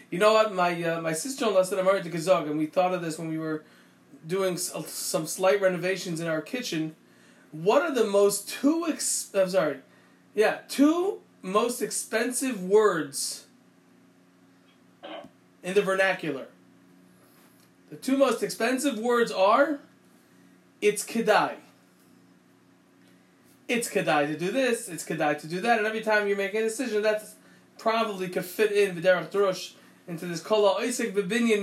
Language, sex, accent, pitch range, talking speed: English, male, American, 180-235 Hz, 155 wpm